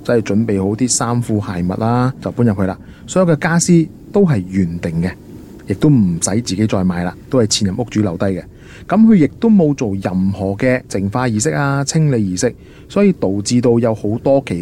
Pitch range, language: 100-145 Hz, Chinese